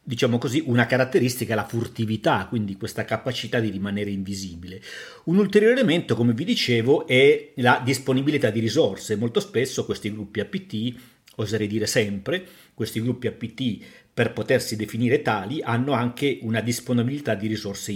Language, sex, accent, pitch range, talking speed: Italian, male, native, 110-135 Hz, 150 wpm